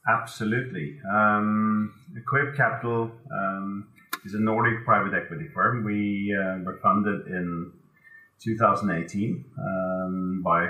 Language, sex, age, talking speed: English, male, 30-49, 105 wpm